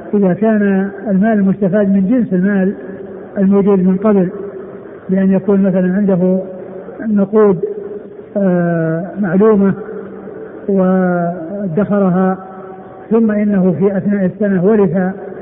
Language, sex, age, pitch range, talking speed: Arabic, male, 60-79, 195-215 Hz, 90 wpm